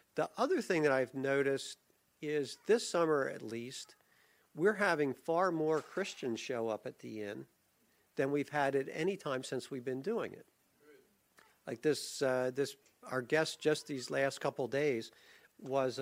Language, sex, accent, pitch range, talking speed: English, male, American, 130-175 Hz, 165 wpm